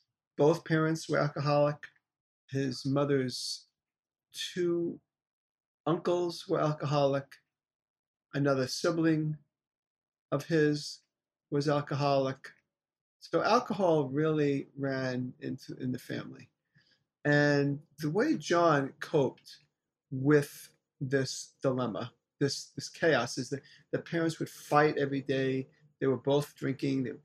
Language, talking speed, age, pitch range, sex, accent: English, 105 wpm, 40-59, 135-155 Hz, male, American